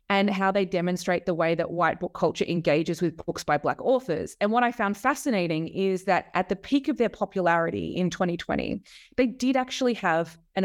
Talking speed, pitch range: 205 wpm, 175-245 Hz